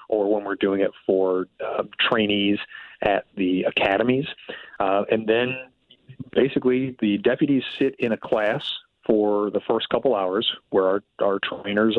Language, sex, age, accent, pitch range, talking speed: English, male, 40-59, American, 100-125 Hz, 150 wpm